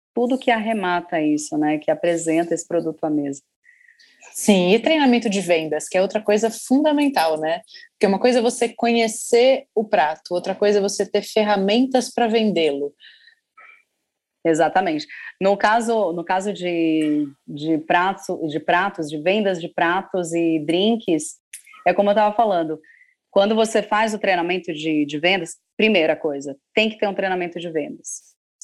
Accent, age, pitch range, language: Brazilian, 20-39, 170-230 Hz, Portuguese